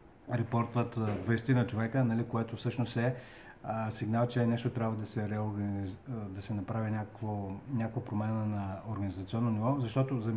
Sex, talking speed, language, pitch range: male, 140 wpm, Bulgarian, 110-125 Hz